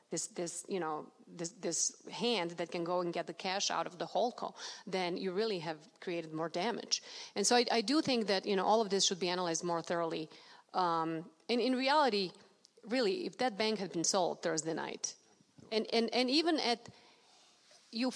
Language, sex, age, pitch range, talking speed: English, female, 30-49, 175-220 Hz, 205 wpm